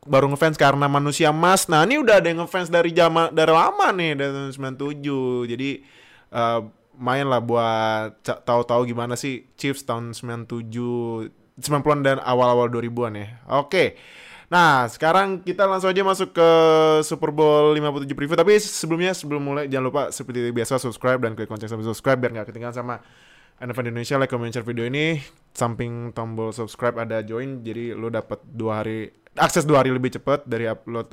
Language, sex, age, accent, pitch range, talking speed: Indonesian, male, 20-39, native, 115-160 Hz, 175 wpm